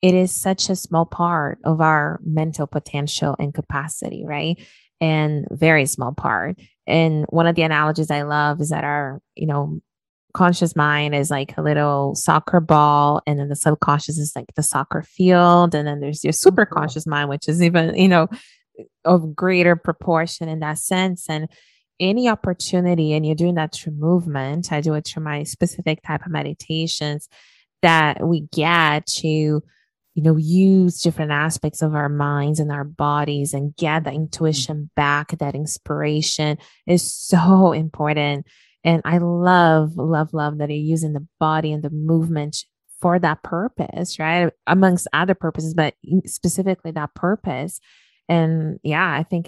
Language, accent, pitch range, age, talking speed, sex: English, American, 150-170 Hz, 20-39, 165 wpm, female